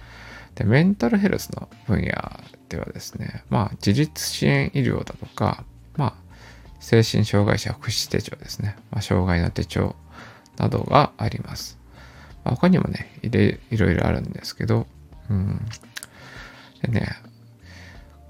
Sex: male